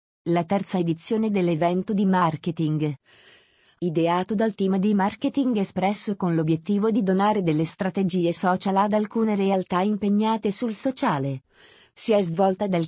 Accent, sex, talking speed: native, female, 135 wpm